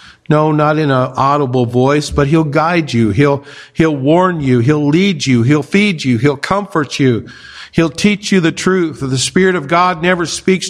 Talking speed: 195 wpm